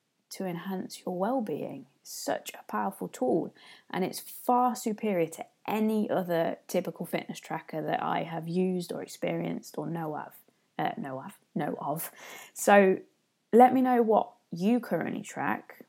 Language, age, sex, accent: English, 20-39, female, British